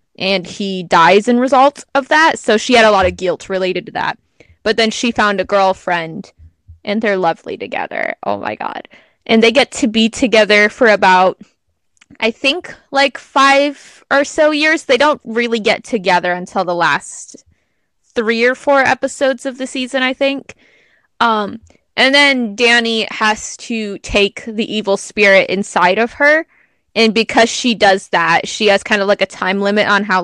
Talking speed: 180 wpm